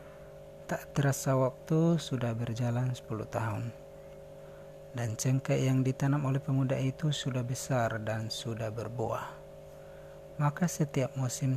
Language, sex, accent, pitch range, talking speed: Indonesian, male, native, 120-145 Hz, 115 wpm